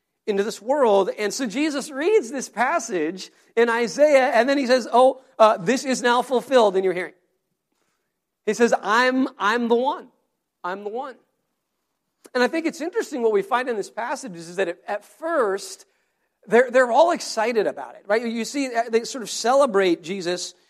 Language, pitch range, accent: English, 195-260 Hz, American